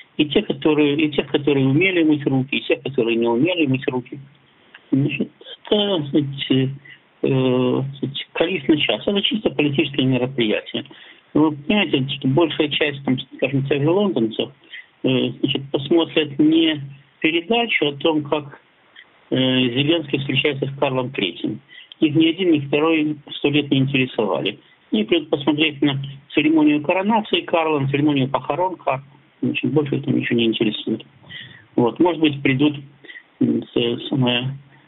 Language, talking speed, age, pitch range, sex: Russian, 125 wpm, 50-69, 130-160 Hz, male